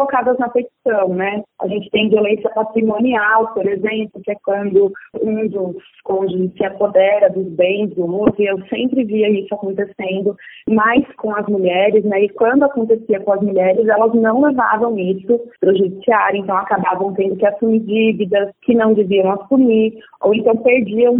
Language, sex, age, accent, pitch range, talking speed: Portuguese, female, 20-39, Brazilian, 200-240 Hz, 170 wpm